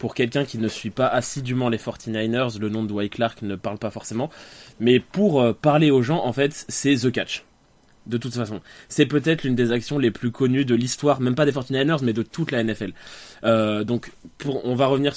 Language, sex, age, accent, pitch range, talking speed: French, male, 20-39, French, 115-140 Hz, 220 wpm